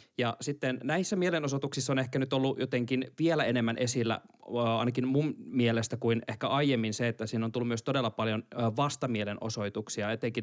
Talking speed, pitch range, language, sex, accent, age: 160 wpm, 115-135 Hz, Finnish, male, native, 20-39